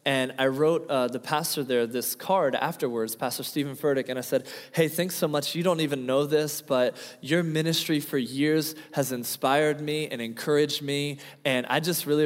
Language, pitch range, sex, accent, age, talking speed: English, 125-150 Hz, male, American, 20-39, 195 wpm